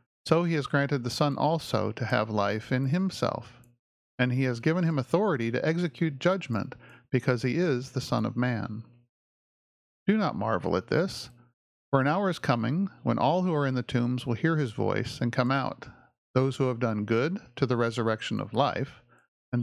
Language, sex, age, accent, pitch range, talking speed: English, male, 50-69, American, 120-145 Hz, 195 wpm